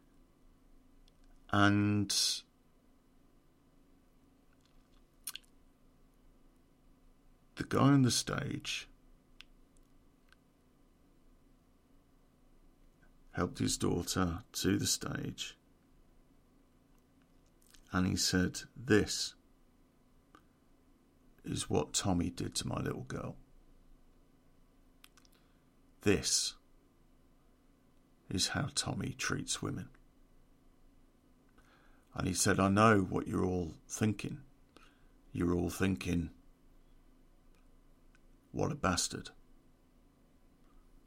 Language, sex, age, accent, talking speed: English, male, 50-69, British, 65 wpm